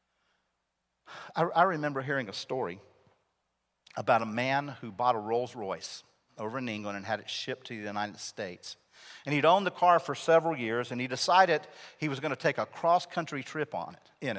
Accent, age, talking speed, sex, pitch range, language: American, 50-69, 190 wpm, male, 130-175 Hz, English